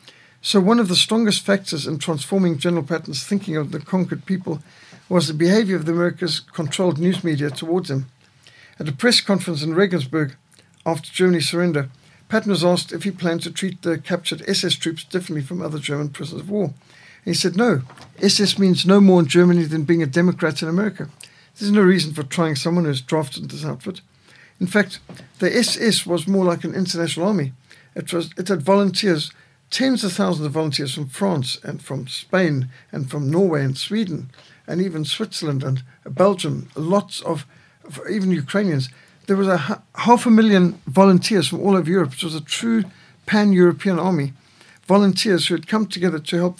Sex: male